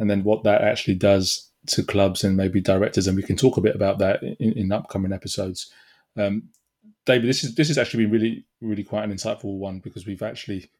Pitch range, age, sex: 100-115 Hz, 20-39, male